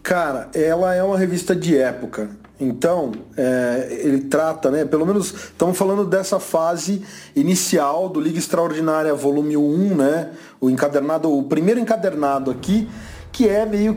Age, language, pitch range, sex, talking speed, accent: 40-59, English, 135-190 Hz, male, 145 wpm, Brazilian